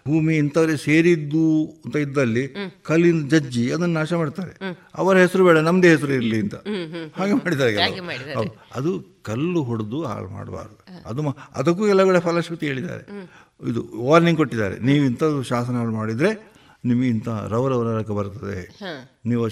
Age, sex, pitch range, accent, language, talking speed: 60-79, male, 115-165 Hz, native, Kannada, 130 wpm